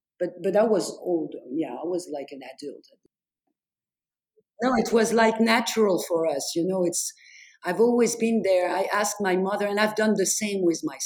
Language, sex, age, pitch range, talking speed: English, female, 50-69, 175-215 Hz, 195 wpm